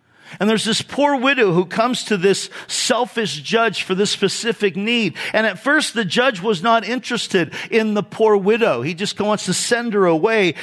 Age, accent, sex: 50-69, American, male